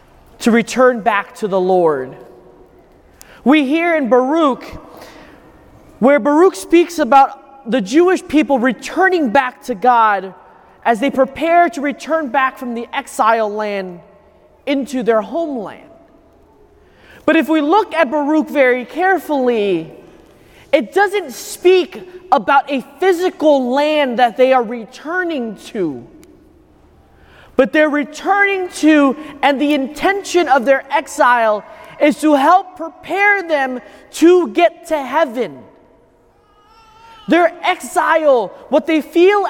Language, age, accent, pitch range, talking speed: English, 30-49, American, 255-335 Hz, 120 wpm